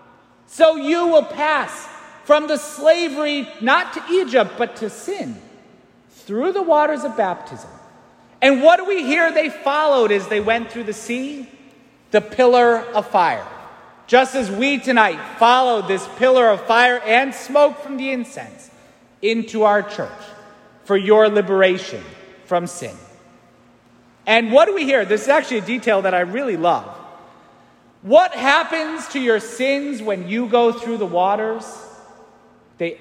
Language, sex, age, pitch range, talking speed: English, male, 40-59, 185-255 Hz, 150 wpm